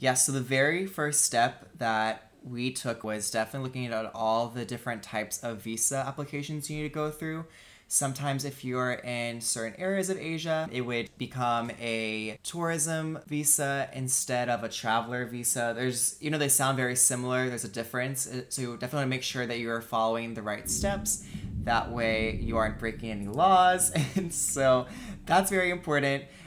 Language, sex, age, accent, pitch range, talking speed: English, male, 20-39, American, 115-135 Hz, 180 wpm